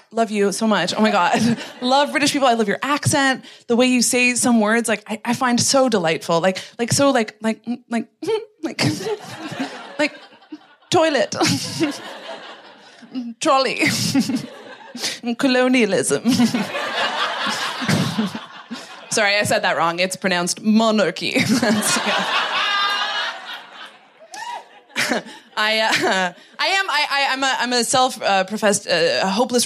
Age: 20-39